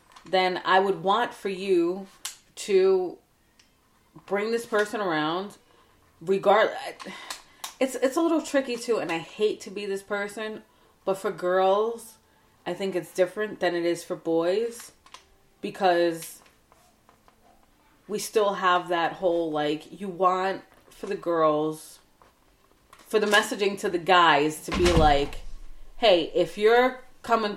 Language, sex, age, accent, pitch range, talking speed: English, female, 30-49, American, 165-210 Hz, 135 wpm